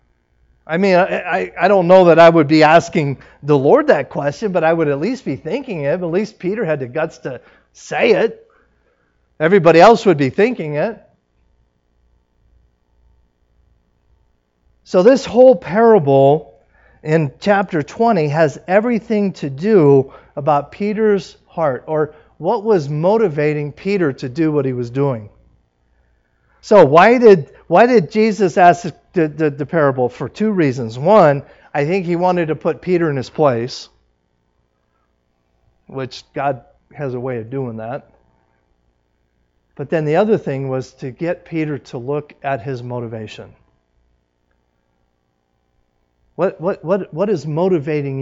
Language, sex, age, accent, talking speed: English, male, 40-59, American, 145 wpm